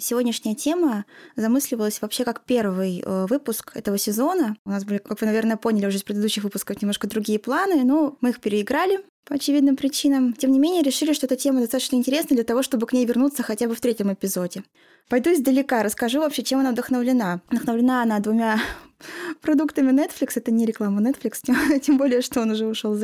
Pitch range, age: 220-285 Hz, 20-39